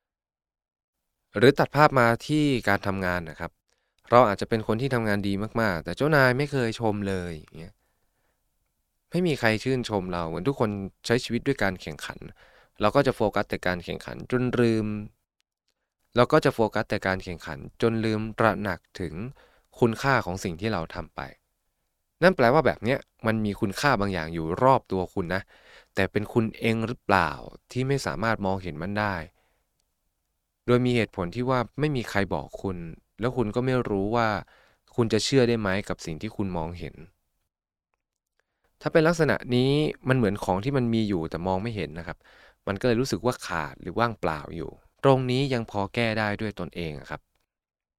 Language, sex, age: Thai, male, 20-39